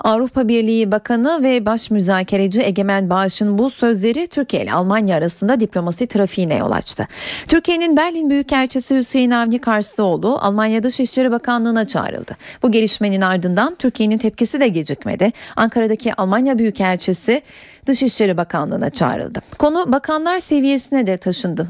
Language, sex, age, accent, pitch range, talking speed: Turkish, female, 30-49, native, 205-260 Hz, 125 wpm